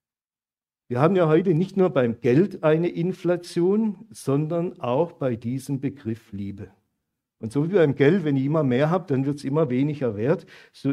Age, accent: 50-69, German